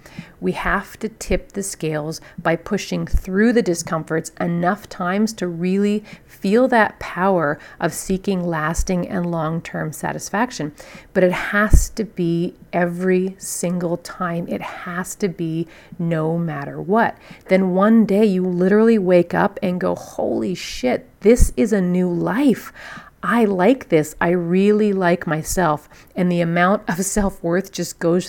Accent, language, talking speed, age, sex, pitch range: American, English, 150 wpm, 40-59, female, 165-195 Hz